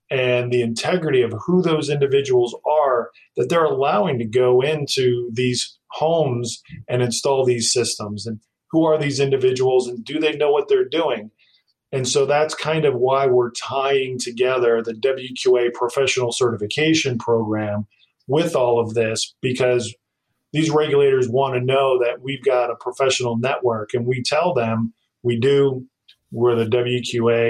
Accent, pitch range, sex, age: American, 120-135 Hz, male, 40-59